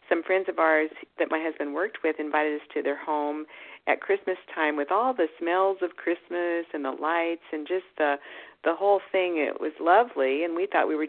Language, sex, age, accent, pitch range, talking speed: English, female, 50-69, American, 145-170 Hz, 215 wpm